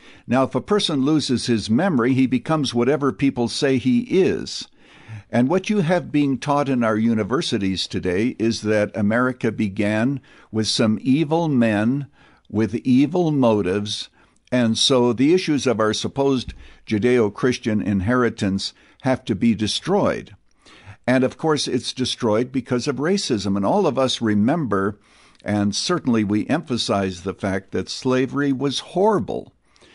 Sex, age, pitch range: male, 60-79, 105-130 Hz